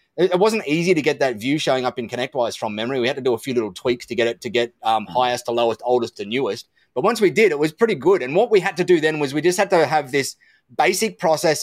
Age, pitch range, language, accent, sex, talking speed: 30-49, 125-175 Hz, English, Australian, male, 295 wpm